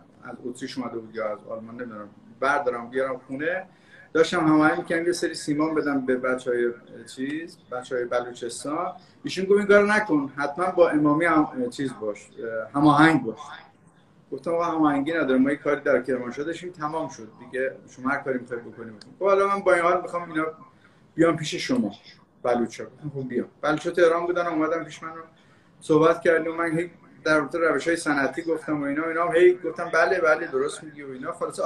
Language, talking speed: Persian, 170 wpm